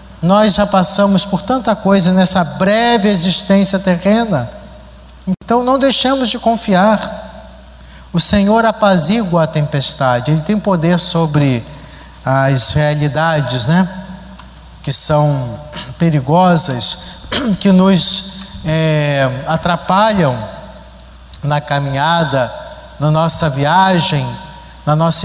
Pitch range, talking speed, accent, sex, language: 145-200 Hz, 95 wpm, Brazilian, male, Portuguese